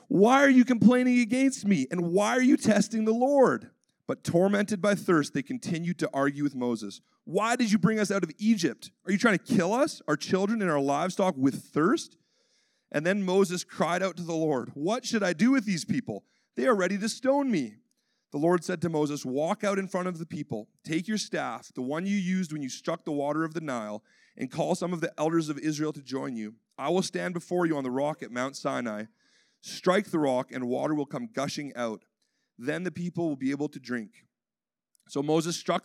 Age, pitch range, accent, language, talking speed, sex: 40-59, 150-210 Hz, American, English, 225 wpm, male